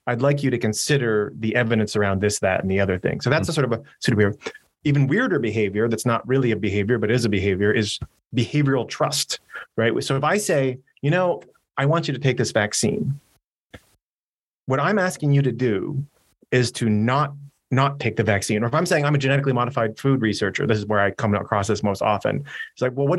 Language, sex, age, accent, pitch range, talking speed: English, male, 30-49, American, 110-140 Hz, 225 wpm